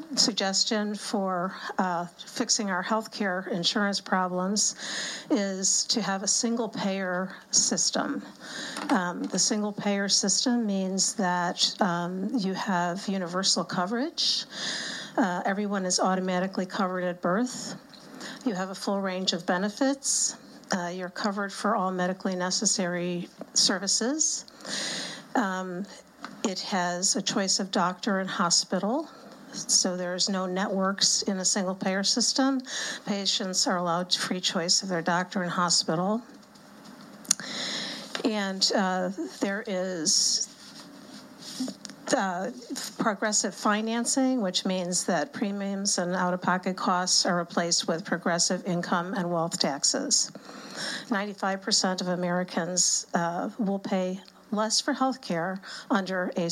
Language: English